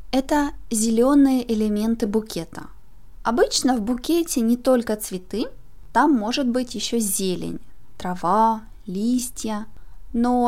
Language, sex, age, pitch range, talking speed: Russian, female, 20-39, 215-260 Hz, 105 wpm